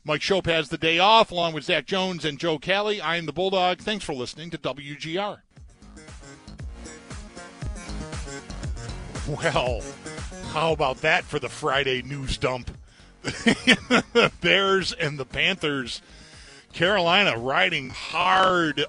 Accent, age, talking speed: American, 40-59, 125 wpm